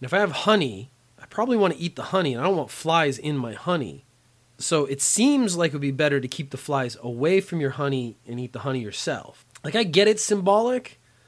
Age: 30-49